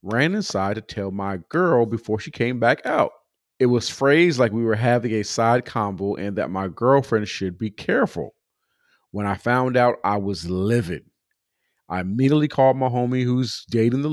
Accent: American